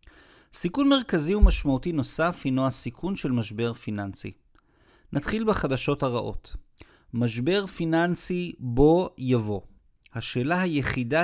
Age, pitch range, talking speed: 50-69, 115-150 Hz, 95 wpm